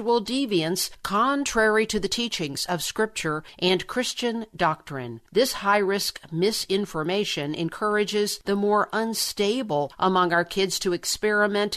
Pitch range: 170-215 Hz